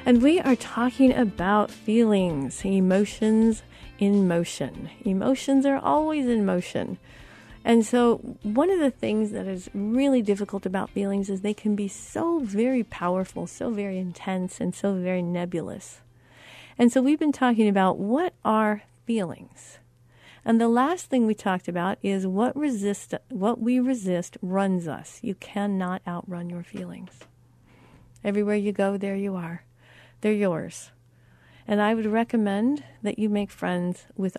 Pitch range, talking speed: 175-230 Hz, 150 wpm